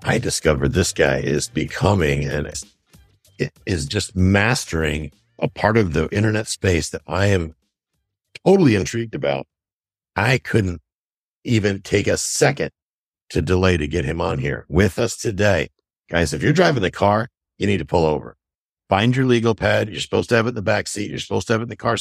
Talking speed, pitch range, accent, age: 190 wpm, 85-115 Hz, American, 60-79